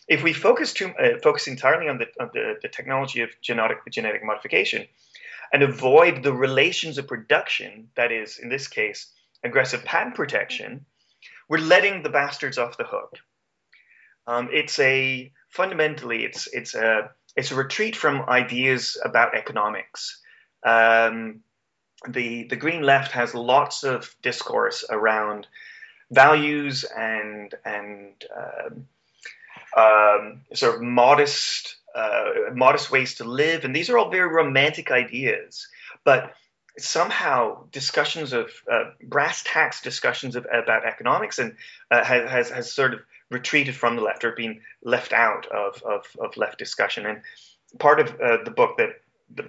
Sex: male